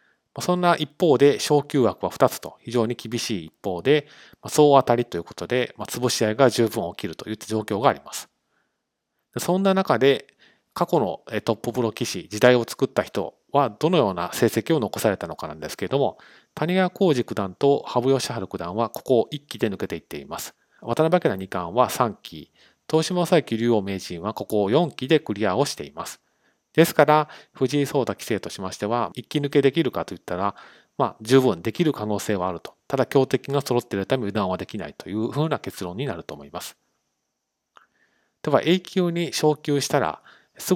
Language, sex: Japanese, male